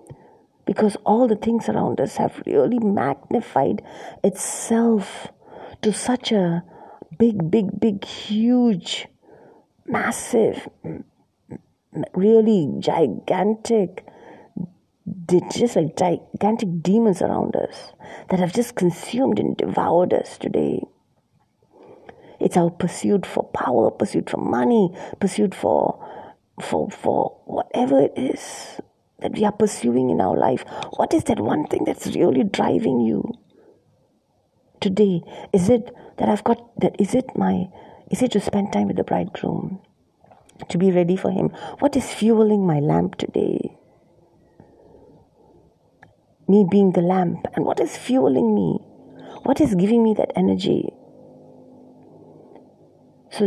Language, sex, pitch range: English, female, 180-225 Hz